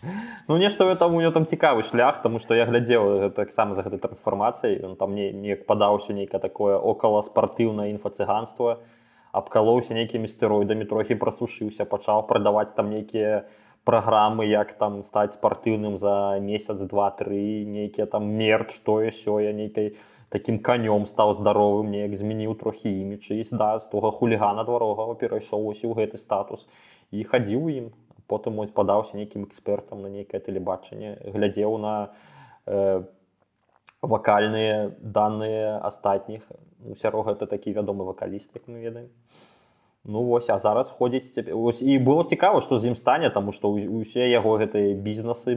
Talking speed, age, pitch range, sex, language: 150 wpm, 20-39, 105-120 Hz, male, Russian